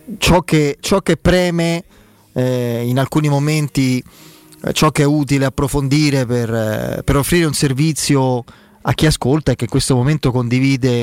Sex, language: male, Italian